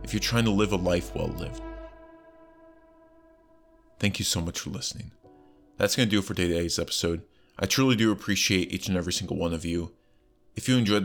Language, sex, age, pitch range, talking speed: English, male, 30-49, 90-105 Hz, 200 wpm